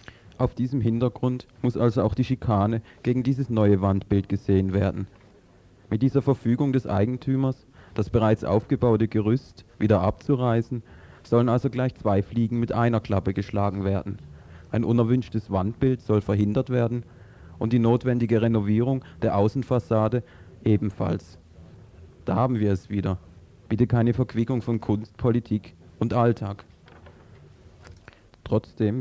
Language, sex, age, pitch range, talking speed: German, male, 30-49, 100-120 Hz, 130 wpm